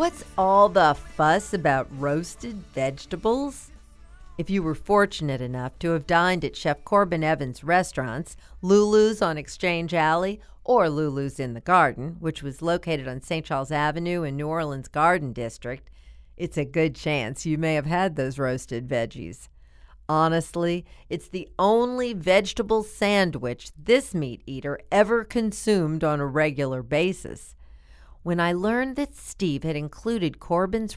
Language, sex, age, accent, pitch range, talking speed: English, female, 50-69, American, 140-205 Hz, 145 wpm